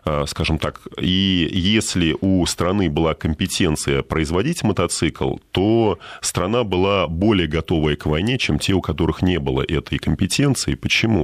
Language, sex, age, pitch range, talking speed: Russian, male, 20-39, 75-95 Hz, 140 wpm